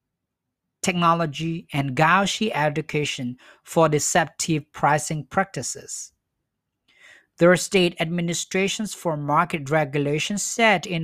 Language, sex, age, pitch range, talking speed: English, male, 50-69, 150-185 Hz, 85 wpm